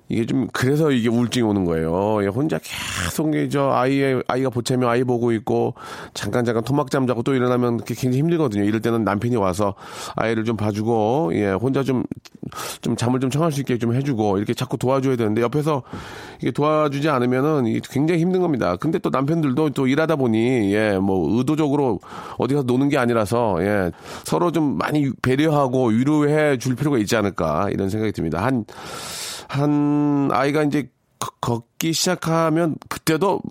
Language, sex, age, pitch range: Korean, male, 40-59, 105-140 Hz